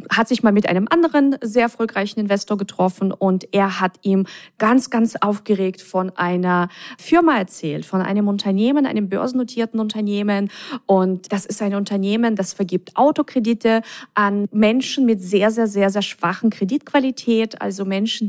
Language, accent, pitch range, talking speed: German, German, 185-225 Hz, 155 wpm